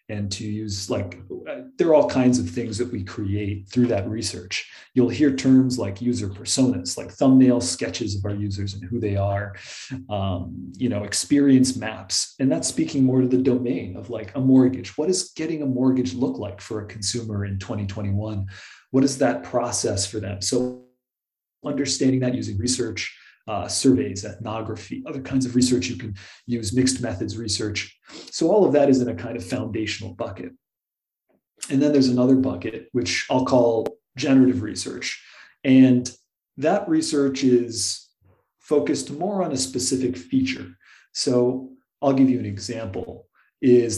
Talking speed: 165 wpm